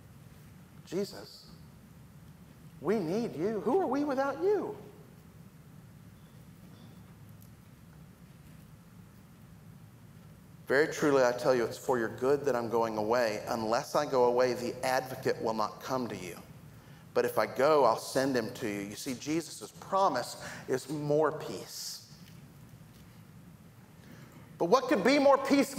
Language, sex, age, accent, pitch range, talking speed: English, male, 50-69, American, 125-170 Hz, 135 wpm